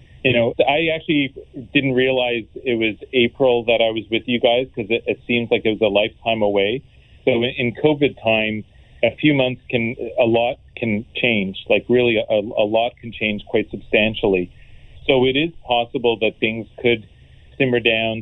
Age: 40-59